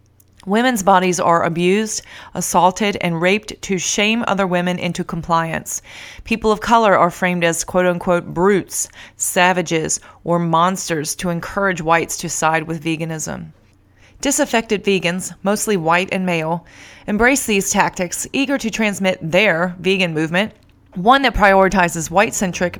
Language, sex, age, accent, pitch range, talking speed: English, female, 20-39, American, 170-205 Hz, 130 wpm